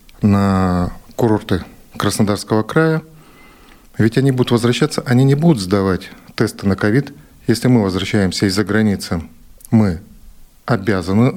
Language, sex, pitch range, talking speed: Russian, male, 100-130 Hz, 115 wpm